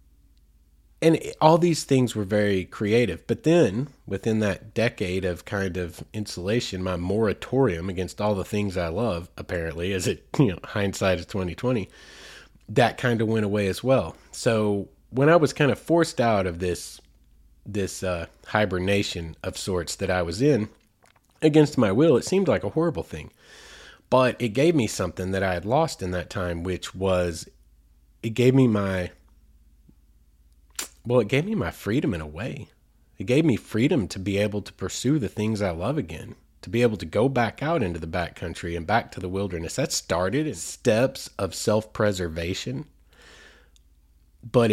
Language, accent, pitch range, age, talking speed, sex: English, American, 85-110 Hz, 30-49, 175 wpm, male